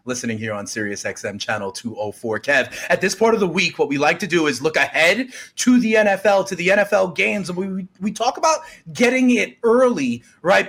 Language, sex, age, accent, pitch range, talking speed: English, male, 30-49, American, 155-230 Hz, 210 wpm